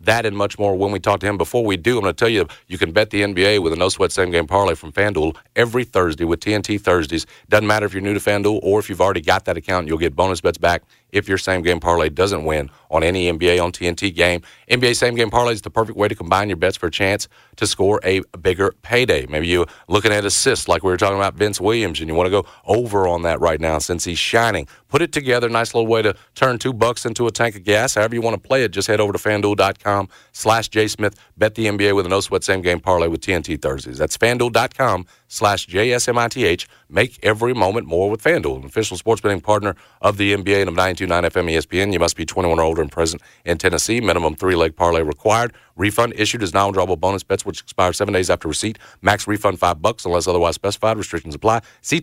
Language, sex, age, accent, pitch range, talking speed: English, male, 40-59, American, 90-110 Hz, 245 wpm